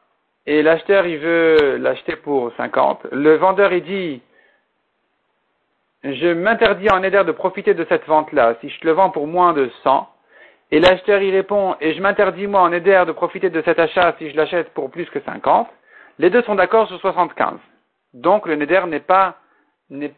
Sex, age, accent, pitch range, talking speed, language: male, 50-69, French, 160-200 Hz, 185 wpm, French